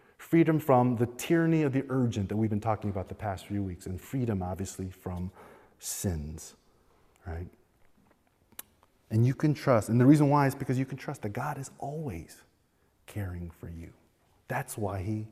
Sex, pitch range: male, 95-130 Hz